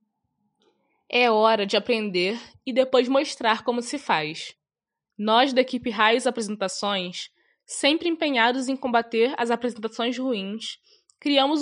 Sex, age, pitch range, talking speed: female, 10-29, 210-270 Hz, 120 wpm